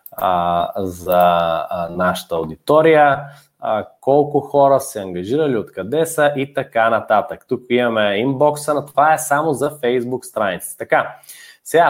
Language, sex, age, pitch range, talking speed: Bulgarian, male, 20-39, 115-145 Hz, 120 wpm